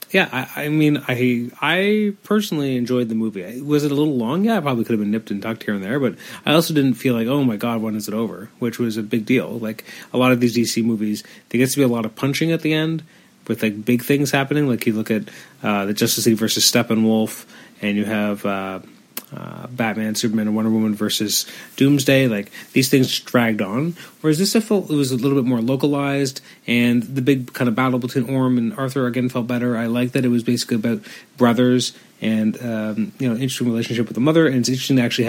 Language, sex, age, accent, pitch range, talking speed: English, male, 30-49, American, 110-135 Hz, 240 wpm